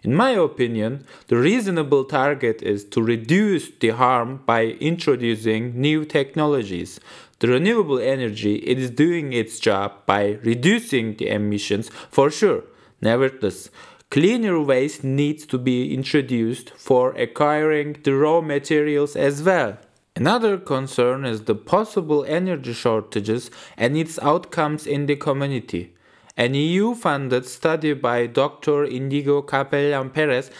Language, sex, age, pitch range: English, male, 20-39, 120-160 Hz